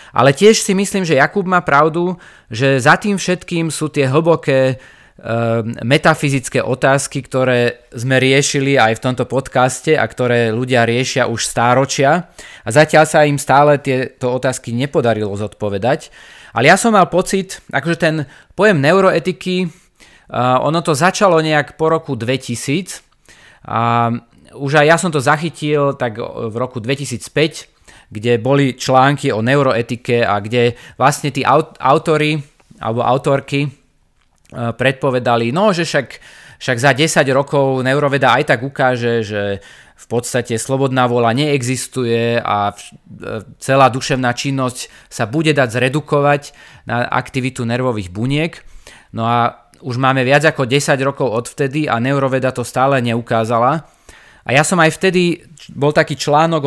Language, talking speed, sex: Slovak, 140 wpm, male